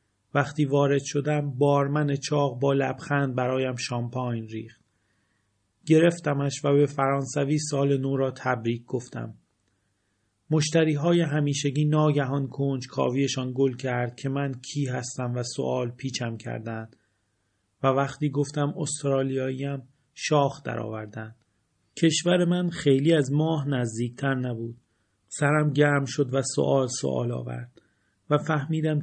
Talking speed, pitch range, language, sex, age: 120 wpm, 120-145 Hz, Persian, male, 40-59